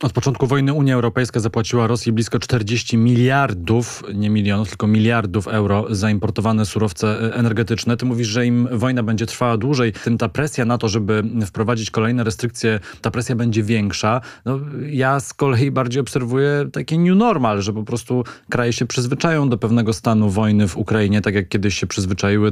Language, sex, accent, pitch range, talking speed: Polish, male, native, 110-120 Hz, 175 wpm